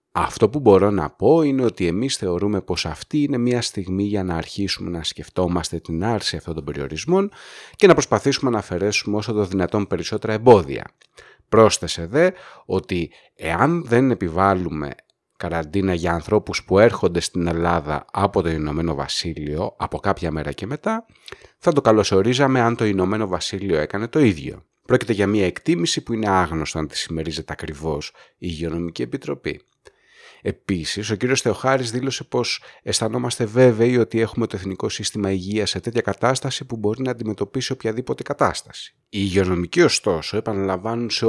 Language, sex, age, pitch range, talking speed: Greek, male, 30-49, 85-120 Hz, 155 wpm